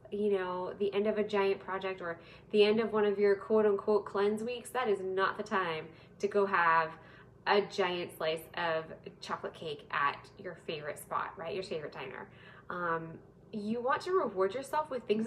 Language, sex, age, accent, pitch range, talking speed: English, female, 10-29, American, 195-245 Hz, 195 wpm